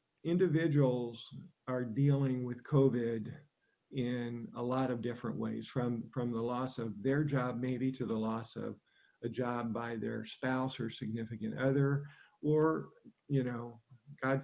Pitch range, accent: 120-145 Hz, American